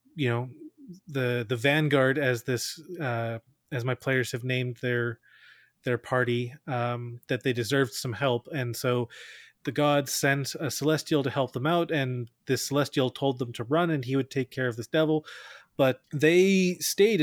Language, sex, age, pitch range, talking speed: English, male, 30-49, 125-155 Hz, 180 wpm